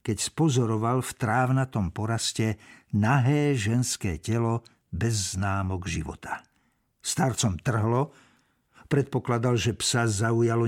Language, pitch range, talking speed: Slovak, 115-145 Hz, 95 wpm